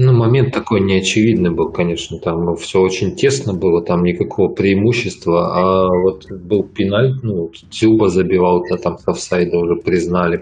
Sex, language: male, Russian